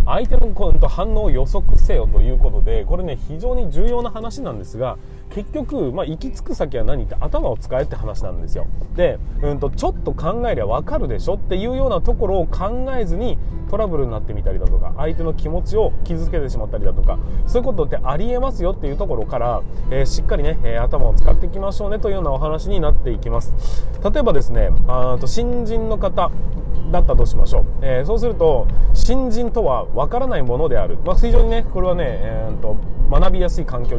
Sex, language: male, Japanese